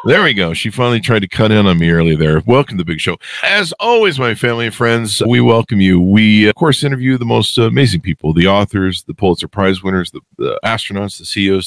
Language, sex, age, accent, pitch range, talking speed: English, male, 50-69, American, 95-140 Hz, 235 wpm